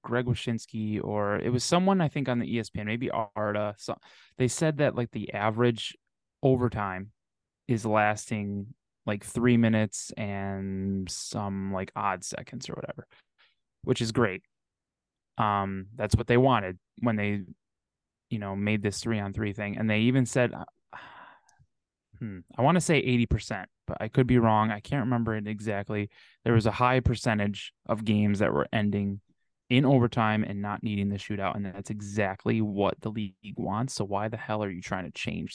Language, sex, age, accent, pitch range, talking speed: English, male, 20-39, American, 100-120 Hz, 175 wpm